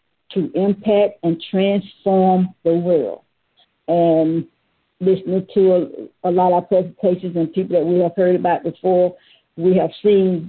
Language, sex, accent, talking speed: English, female, American, 150 wpm